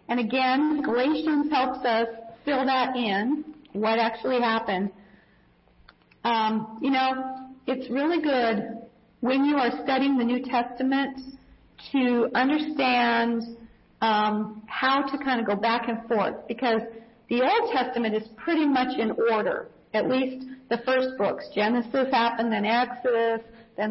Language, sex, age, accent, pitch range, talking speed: English, female, 40-59, American, 225-265 Hz, 135 wpm